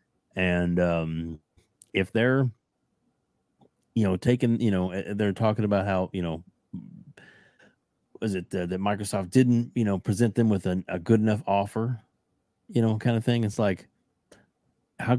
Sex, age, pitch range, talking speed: male, 40-59, 90-120 Hz, 155 wpm